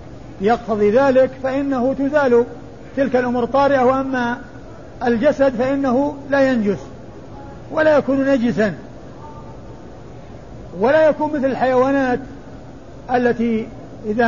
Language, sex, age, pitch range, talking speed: Arabic, male, 50-69, 205-260 Hz, 90 wpm